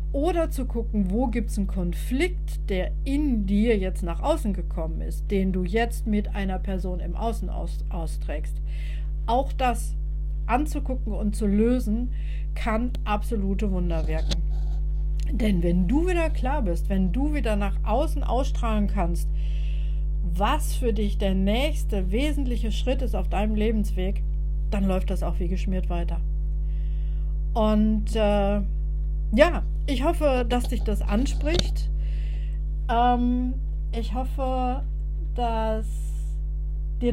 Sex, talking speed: female, 130 wpm